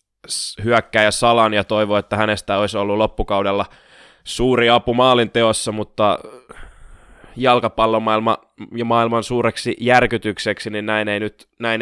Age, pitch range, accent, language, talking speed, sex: 20-39, 95-110 Hz, native, Finnish, 125 wpm, male